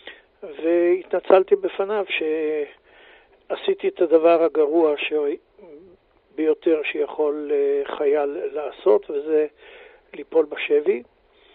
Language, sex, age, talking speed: Hebrew, male, 60-79, 70 wpm